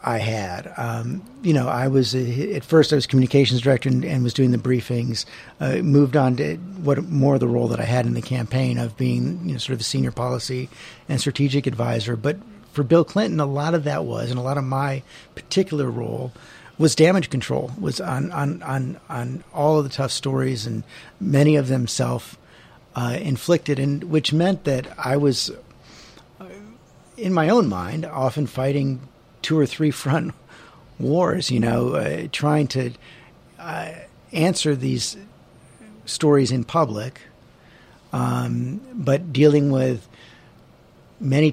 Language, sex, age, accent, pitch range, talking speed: English, male, 50-69, American, 125-150 Hz, 165 wpm